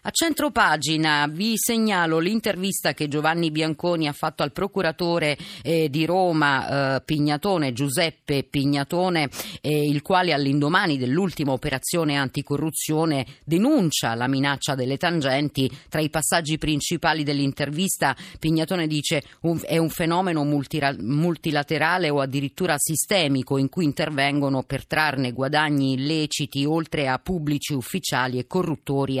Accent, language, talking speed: native, Italian, 115 wpm